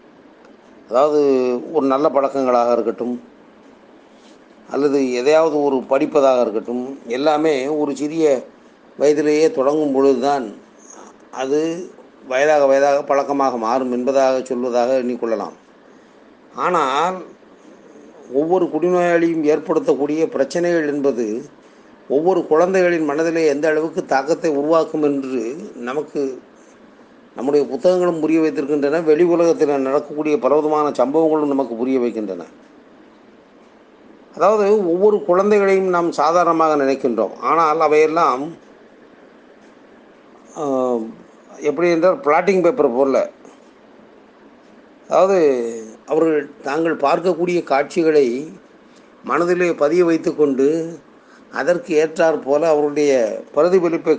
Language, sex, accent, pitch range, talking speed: Tamil, male, native, 135-165 Hz, 85 wpm